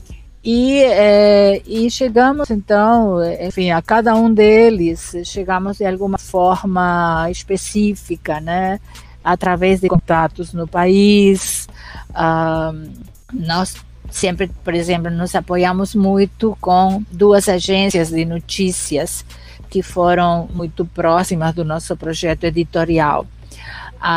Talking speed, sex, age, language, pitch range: 105 wpm, female, 50-69, Portuguese, 160-195 Hz